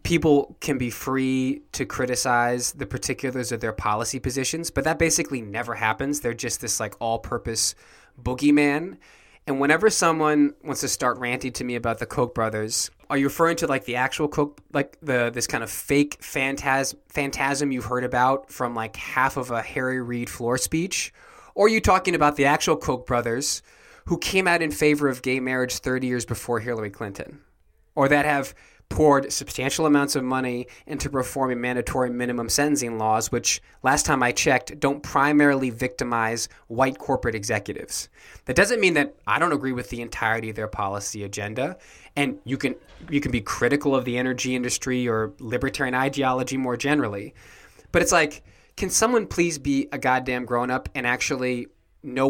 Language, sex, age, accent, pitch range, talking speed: English, male, 20-39, American, 120-145 Hz, 175 wpm